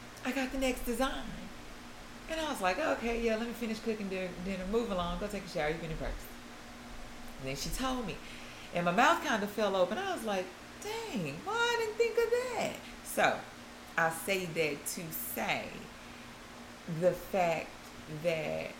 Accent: American